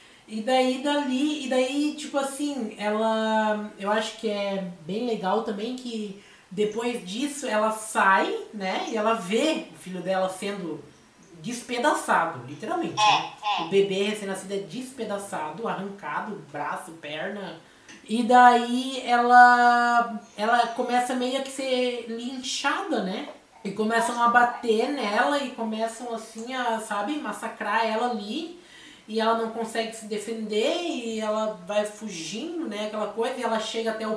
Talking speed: 140 wpm